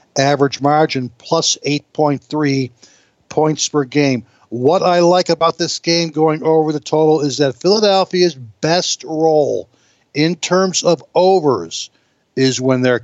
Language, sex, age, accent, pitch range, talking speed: English, male, 60-79, American, 130-160 Hz, 135 wpm